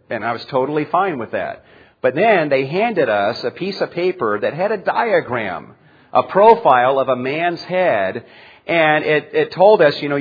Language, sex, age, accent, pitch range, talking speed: English, male, 50-69, American, 120-155 Hz, 195 wpm